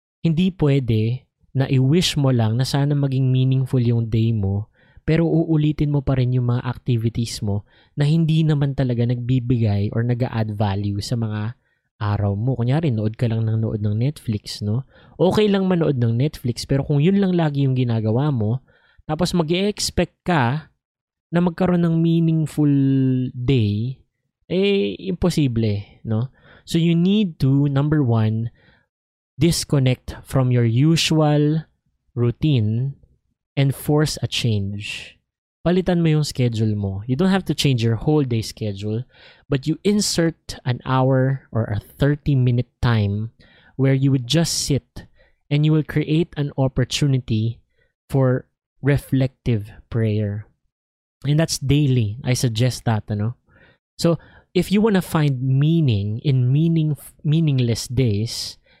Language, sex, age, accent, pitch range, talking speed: English, male, 20-39, Filipino, 115-155 Hz, 145 wpm